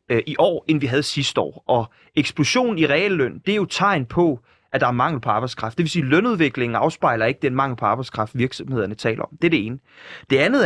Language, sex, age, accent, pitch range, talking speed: Danish, male, 30-49, native, 135-190 Hz, 235 wpm